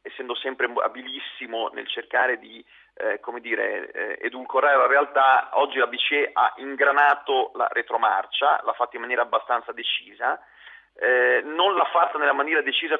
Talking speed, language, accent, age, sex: 150 wpm, Italian, native, 40-59, male